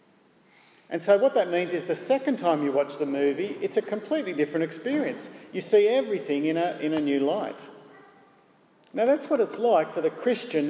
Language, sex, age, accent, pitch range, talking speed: English, male, 50-69, Australian, 155-215 Hz, 190 wpm